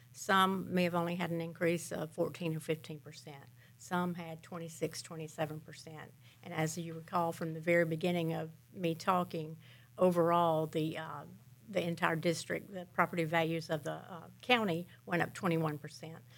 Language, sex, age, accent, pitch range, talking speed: English, female, 50-69, American, 155-180 Hz, 165 wpm